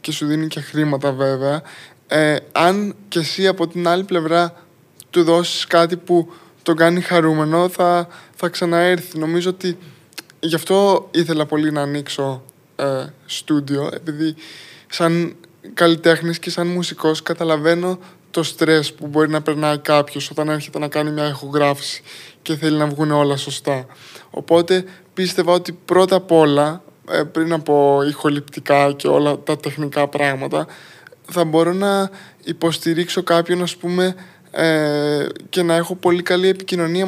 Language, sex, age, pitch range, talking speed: Greek, male, 20-39, 150-175 Hz, 140 wpm